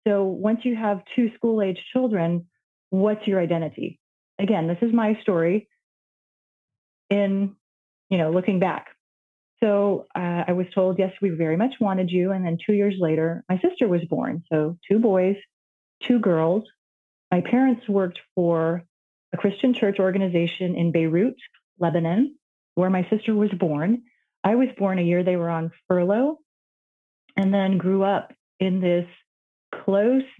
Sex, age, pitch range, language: female, 30-49, 175-215 Hz, English